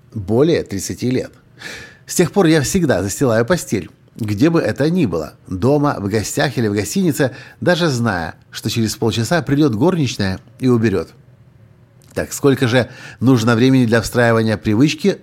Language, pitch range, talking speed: Russian, 110-140 Hz, 150 wpm